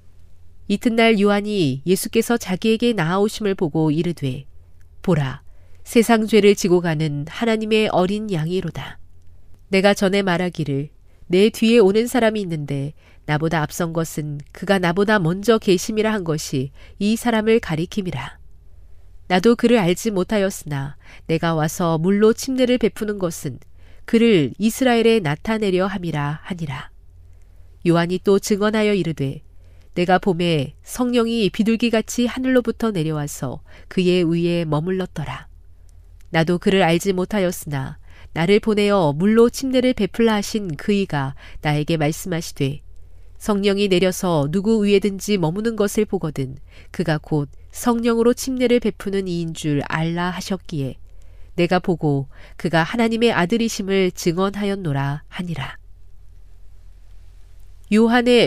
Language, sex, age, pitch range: Korean, female, 40-59, 140-210 Hz